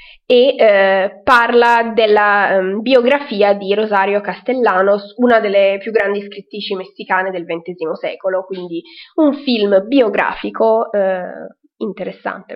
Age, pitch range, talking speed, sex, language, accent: 20-39, 195-260 Hz, 115 wpm, female, Italian, native